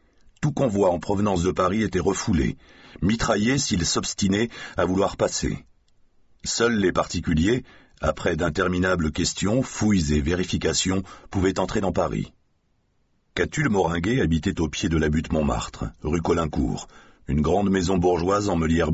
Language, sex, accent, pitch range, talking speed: French, male, French, 80-95 Hz, 140 wpm